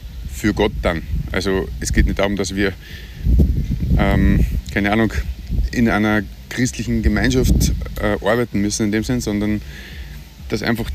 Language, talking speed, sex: German, 145 wpm, male